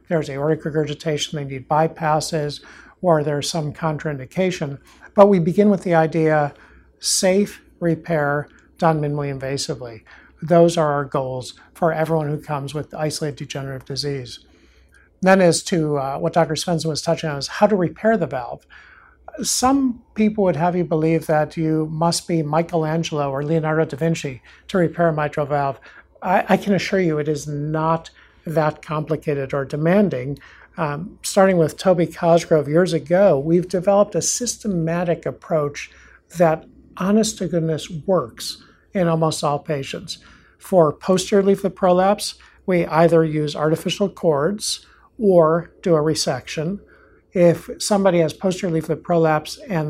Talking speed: 145 wpm